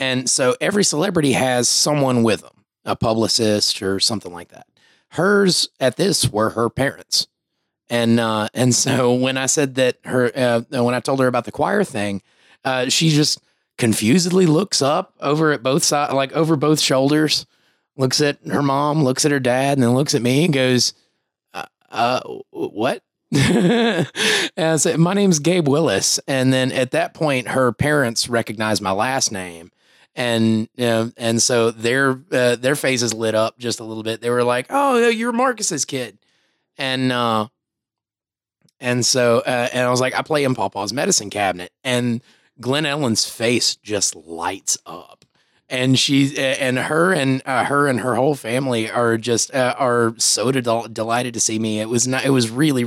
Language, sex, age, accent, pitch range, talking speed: English, male, 30-49, American, 115-145 Hz, 180 wpm